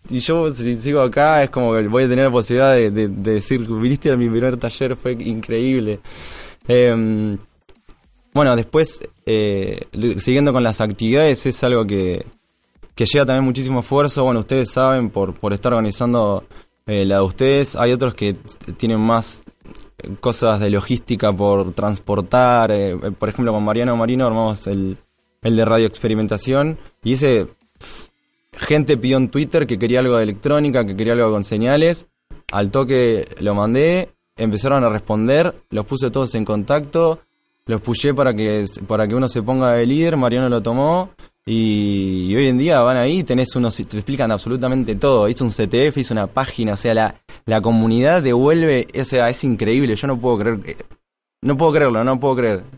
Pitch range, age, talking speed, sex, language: 110-130 Hz, 20-39, 175 wpm, male, Spanish